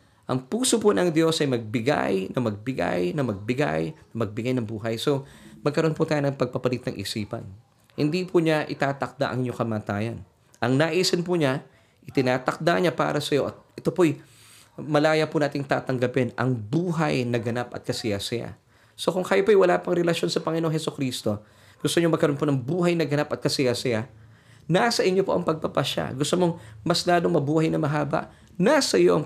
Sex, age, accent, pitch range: male, 20-39, native, 115-155 Hz